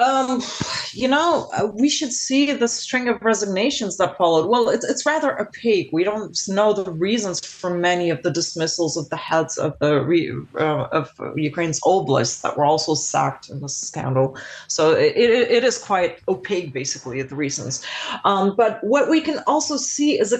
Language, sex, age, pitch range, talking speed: English, female, 30-49, 175-235 Hz, 180 wpm